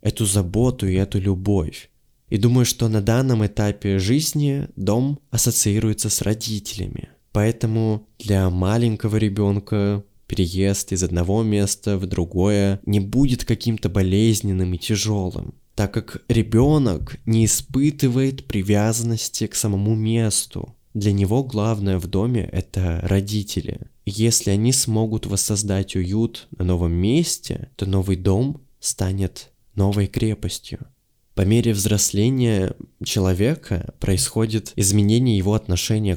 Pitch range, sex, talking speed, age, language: 100-120 Hz, male, 120 wpm, 20-39, Russian